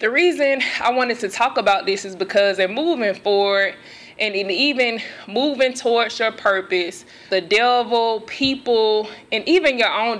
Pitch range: 200-250 Hz